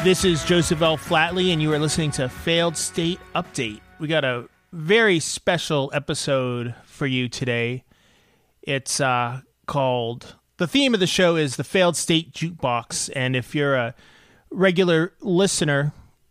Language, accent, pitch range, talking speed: English, American, 135-175 Hz, 150 wpm